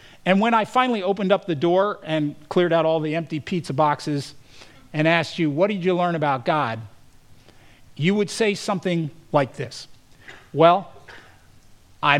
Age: 50-69